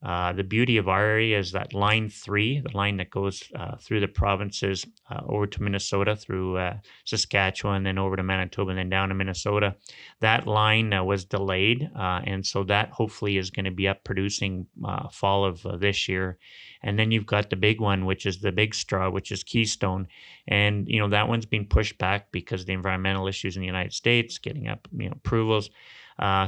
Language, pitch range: English, 95-110 Hz